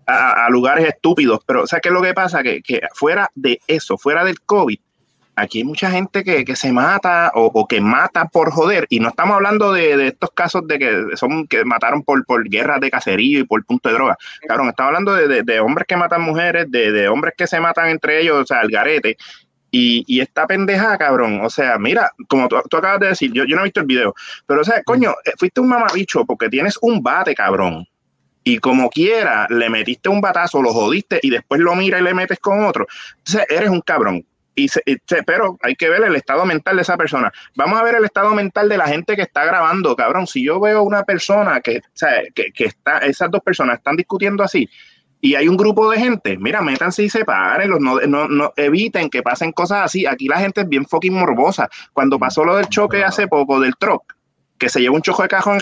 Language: Spanish